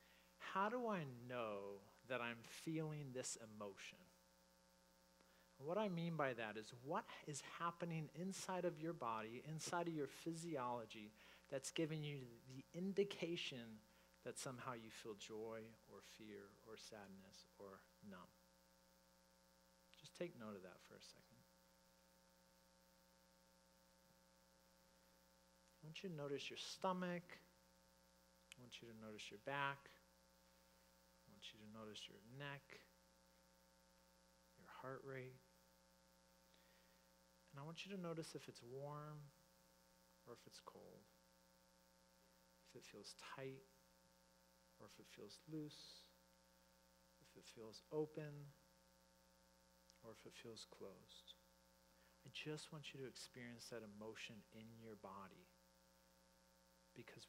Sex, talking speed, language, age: male, 120 wpm, English, 40-59